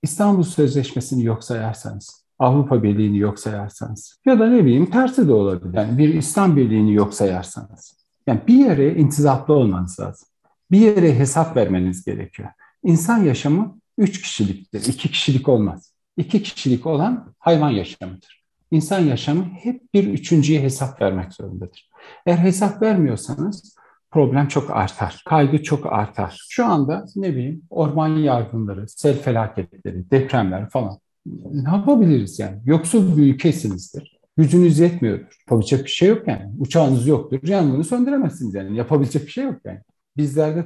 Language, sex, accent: Turkish, male, native